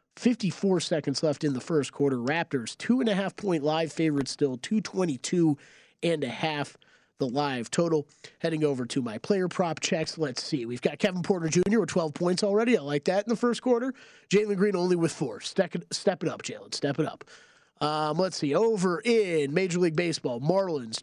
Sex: male